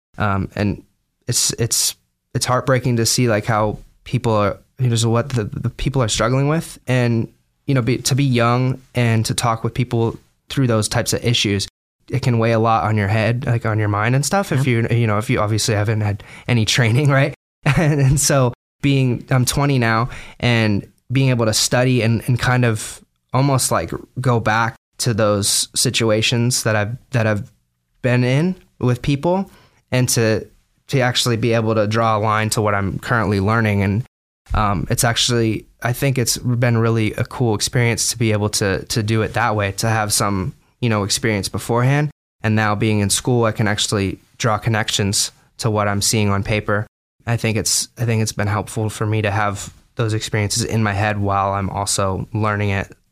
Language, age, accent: English, 20-39, American